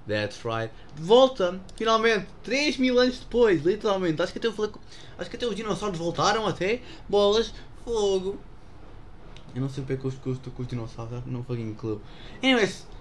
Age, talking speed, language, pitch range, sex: 20-39, 190 wpm, English, 110-160 Hz, male